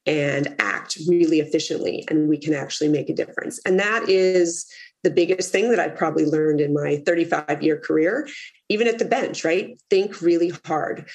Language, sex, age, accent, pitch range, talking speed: English, female, 30-49, American, 150-180 Hz, 180 wpm